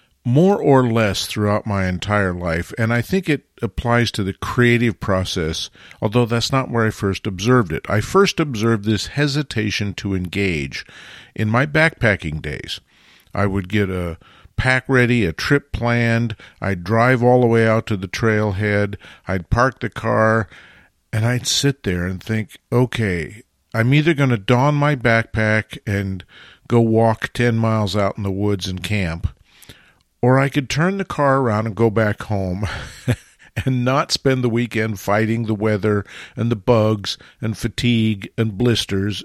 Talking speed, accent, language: 165 wpm, American, English